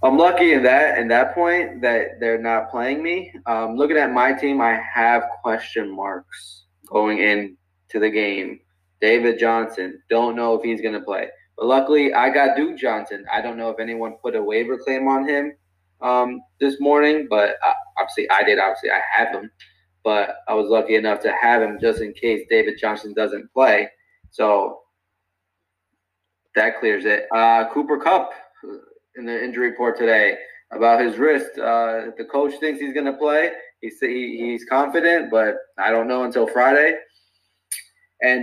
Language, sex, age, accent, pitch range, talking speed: English, male, 20-39, American, 110-145 Hz, 175 wpm